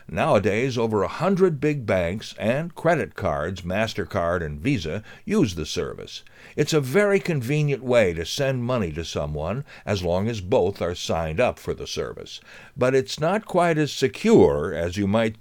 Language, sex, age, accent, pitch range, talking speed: English, male, 60-79, American, 95-140 Hz, 170 wpm